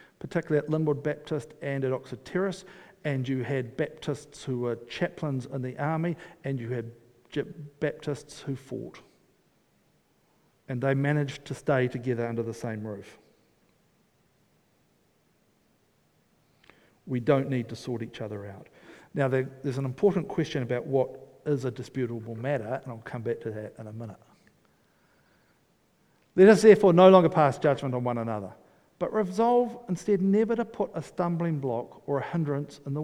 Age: 50-69